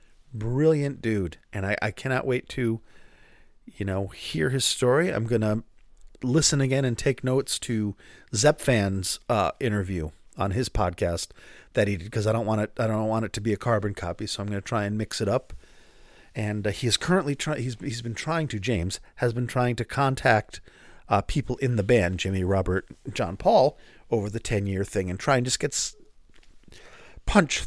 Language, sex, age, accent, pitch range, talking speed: English, male, 40-59, American, 100-125 Hz, 200 wpm